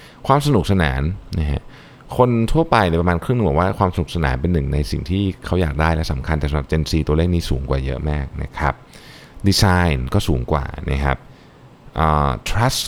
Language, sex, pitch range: Thai, male, 75-100 Hz